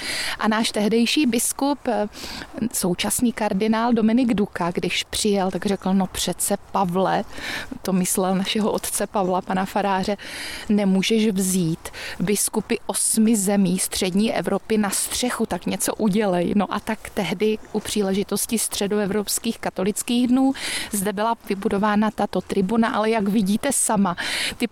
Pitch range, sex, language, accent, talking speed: 195-225 Hz, female, Czech, native, 130 wpm